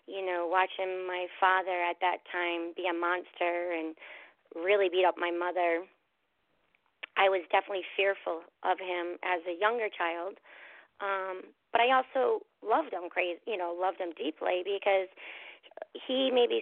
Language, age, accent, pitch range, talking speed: English, 30-49, American, 180-215 Hz, 150 wpm